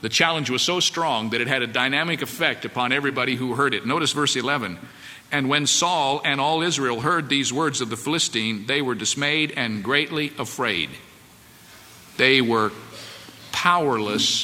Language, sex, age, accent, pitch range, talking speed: English, male, 50-69, American, 140-200 Hz, 165 wpm